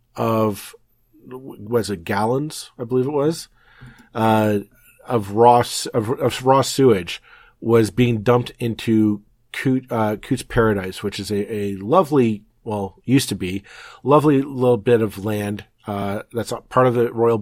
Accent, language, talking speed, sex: American, English, 145 wpm, male